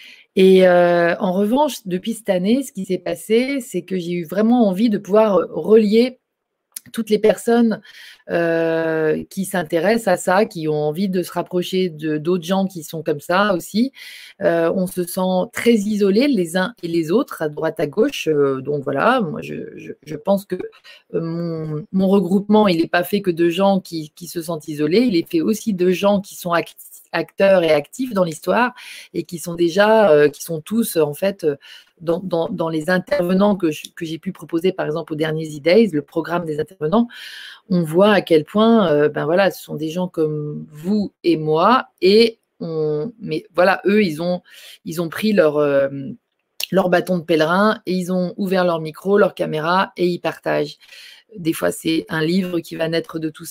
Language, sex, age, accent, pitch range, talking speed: French, female, 30-49, French, 160-200 Hz, 200 wpm